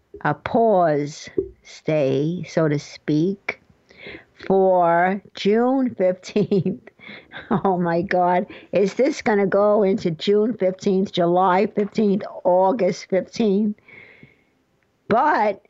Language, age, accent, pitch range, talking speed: English, 60-79, American, 170-205 Hz, 95 wpm